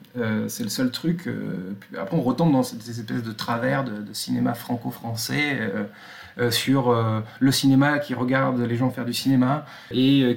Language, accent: French, French